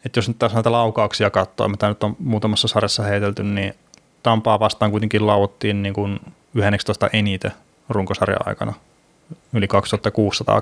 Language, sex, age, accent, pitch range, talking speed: Finnish, male, 20-39, native, 100-115 Hz, 140 wpm